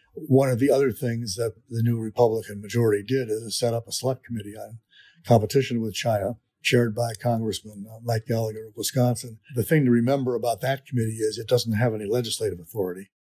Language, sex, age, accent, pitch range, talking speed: English, male, 50-69, American, 110-125 Hz, 190 wpm